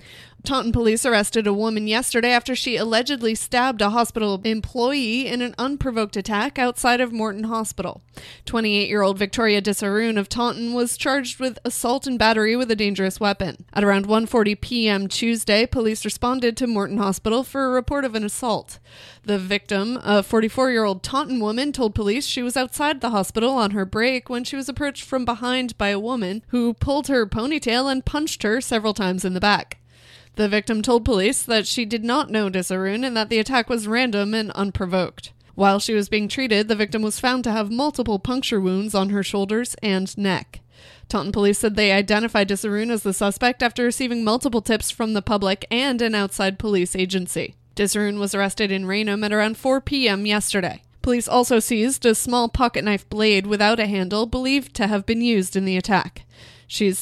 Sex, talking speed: female, 185 wpm